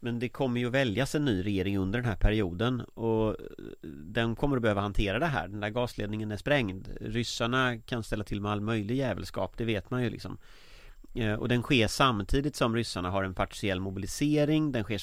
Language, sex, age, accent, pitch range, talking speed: Swedish, male, 30-49, native, 100-125 Hz, 205 wpm